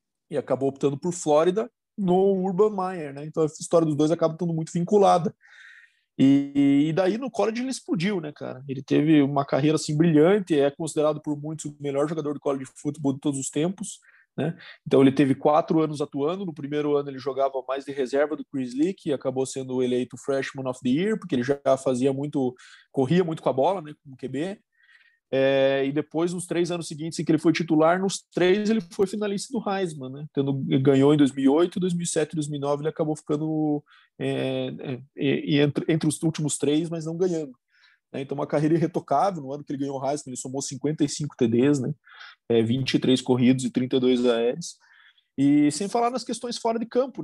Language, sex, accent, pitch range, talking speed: Portuguese, male, Brazilian, 140-180 Hz, 200 wpm